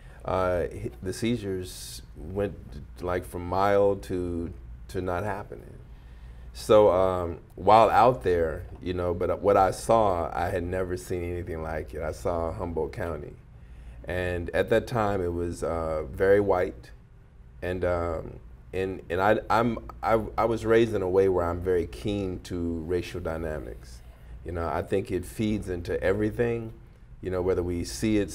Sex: male